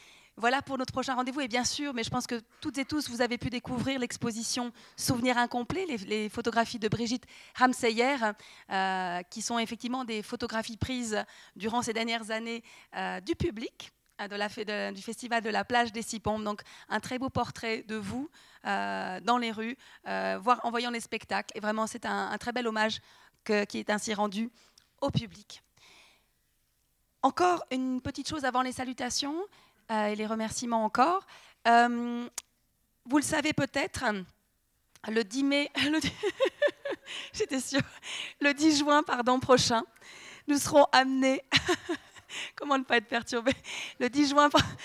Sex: female